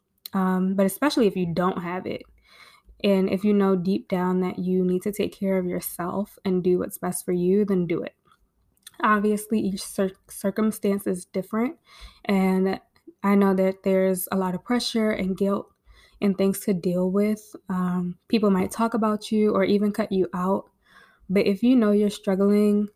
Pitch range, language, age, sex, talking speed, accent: 190-210 Hz, English, 20-39, female, 180 wpm, American